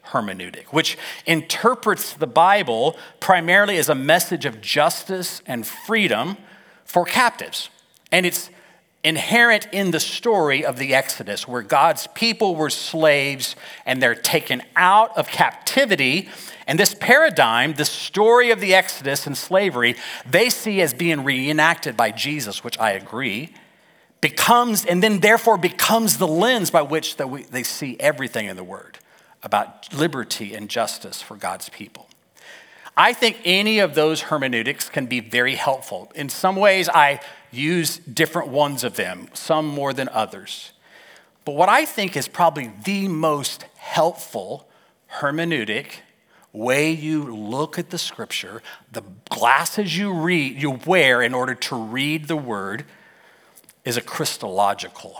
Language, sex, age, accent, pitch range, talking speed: English, male, 40-59, American, 140-190 Hz, 140 wpm